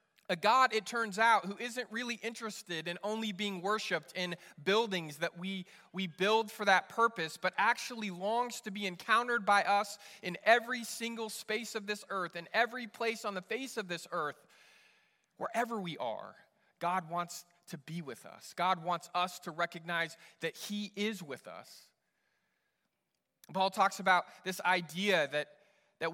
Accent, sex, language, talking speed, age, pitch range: American, male, English, 165 wpm, 20-39, 180-220 Hz